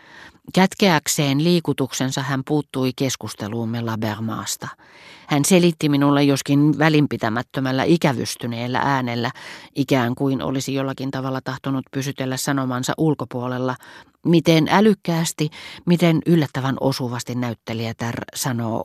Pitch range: 125-165 Hz